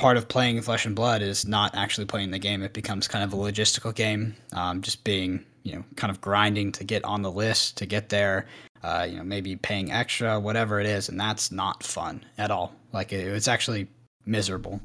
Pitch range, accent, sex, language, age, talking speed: 95-115 Hz, American, male, English, 10-29, 220 wpm